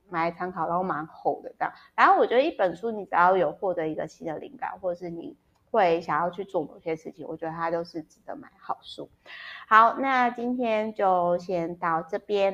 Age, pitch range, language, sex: 20-39, 165-195 Hz, Chinese, female